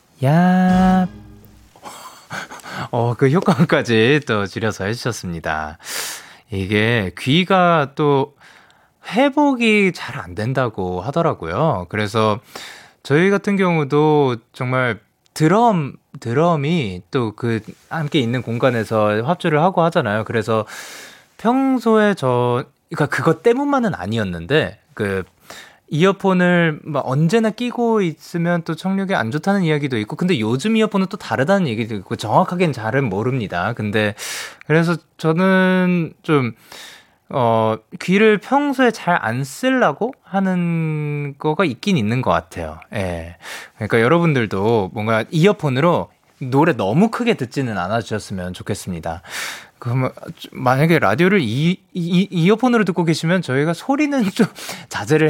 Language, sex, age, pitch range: Korean, male, 20-39, 115-185 Hz